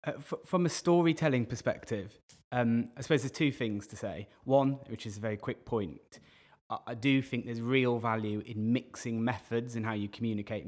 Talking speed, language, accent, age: 190 wpm, English, British, 20-39